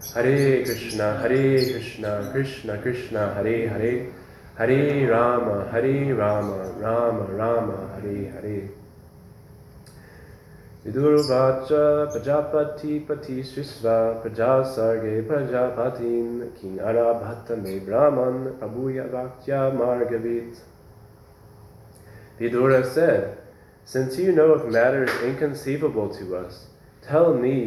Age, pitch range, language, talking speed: 20-39, 105-130 Hz, English, 90 wpm